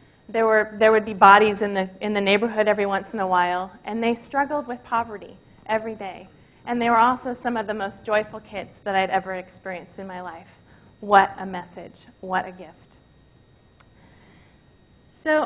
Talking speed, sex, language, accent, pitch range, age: 185 wpm, female, English, American, 205-265 Hz, 30-49